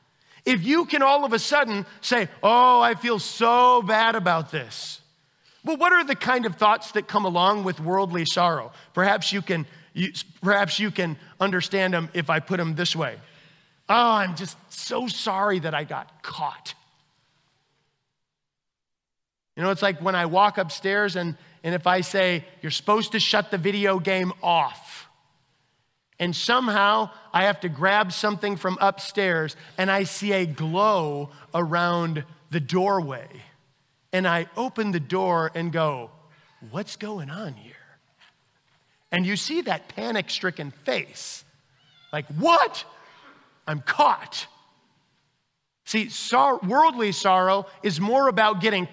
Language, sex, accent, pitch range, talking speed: English, male, American, 160-210 Hz, 145 wpm